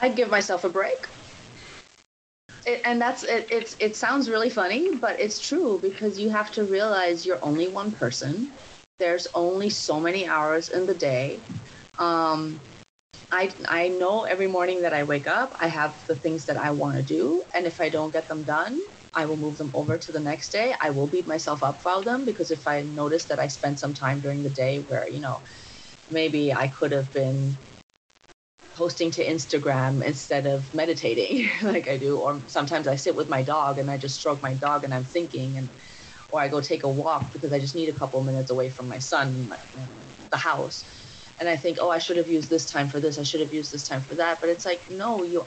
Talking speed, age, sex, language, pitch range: 220 wpm, 30-49, female, English, 140-175 Hz